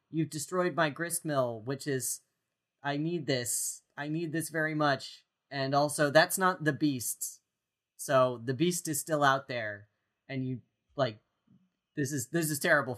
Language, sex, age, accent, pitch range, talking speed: English, male, 30-49, American, 115-155 Hz, 165 wpm